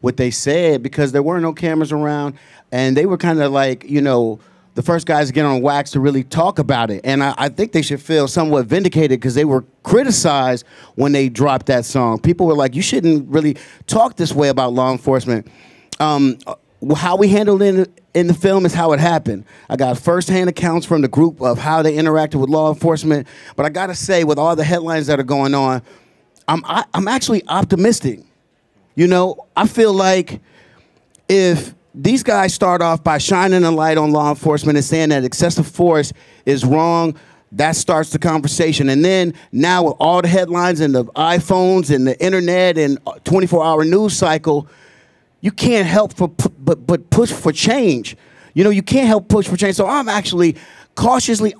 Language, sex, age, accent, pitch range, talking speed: English, male, 30-49, American, 140-180 Hz, 195 wpm